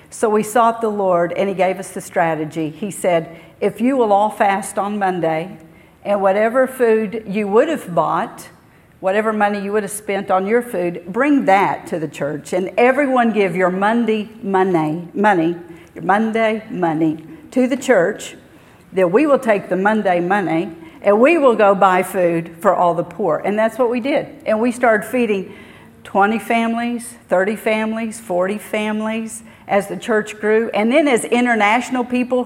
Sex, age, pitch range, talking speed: female, 50-69, 180-230 Hz, 175 wpm